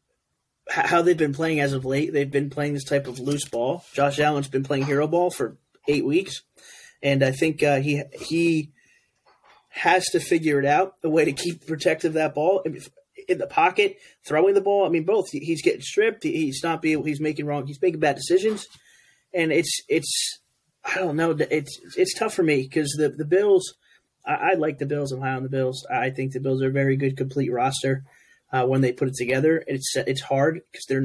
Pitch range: 140-215 Hz